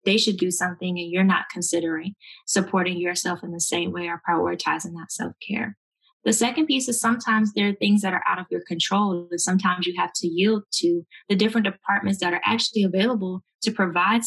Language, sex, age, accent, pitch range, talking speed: English, female, 20-39, American, 180-210 Hz, 200 wpm